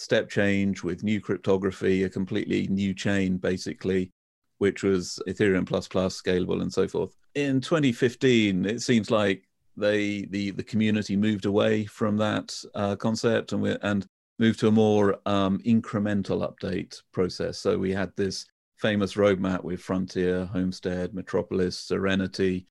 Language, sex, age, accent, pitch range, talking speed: English, male, 40-59, British, 95-110 Hz, 145 wpm